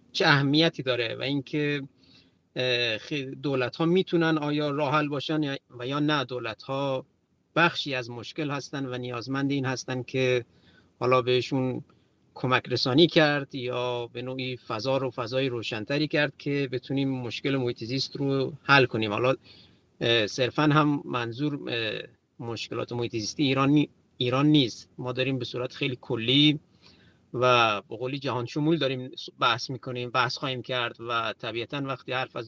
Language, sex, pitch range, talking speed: Persian, male, 120-145 Hz, 135 wpm